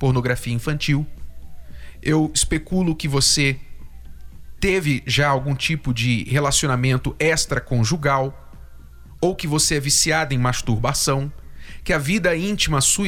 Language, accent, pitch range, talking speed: Portuguese, Brazilian, 110-160 Hz, 115 wpm